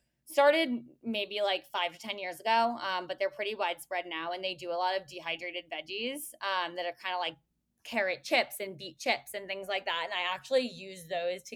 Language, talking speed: English, 225 wpm